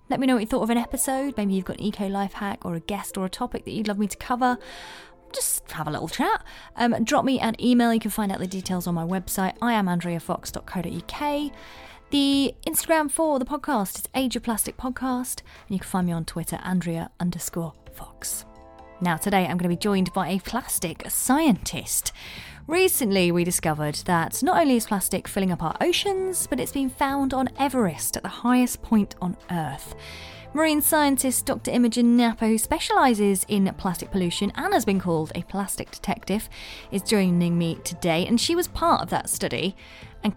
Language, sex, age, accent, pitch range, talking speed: English, female, 20-39, British, 175-255 Hz, 195 wpm